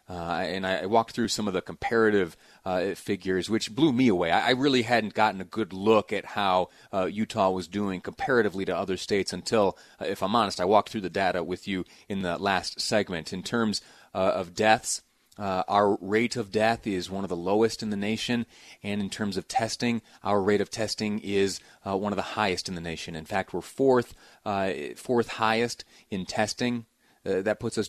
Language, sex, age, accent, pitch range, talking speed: English, male, 30-49, American, 90-110 Hz, 210 wpm